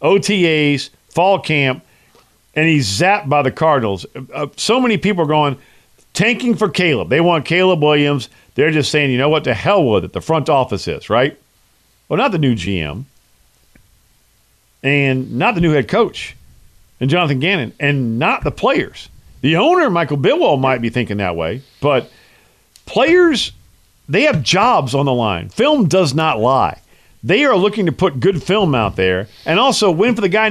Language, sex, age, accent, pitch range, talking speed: English, male, 50-69, American, 135-225 Hz, 175 wpm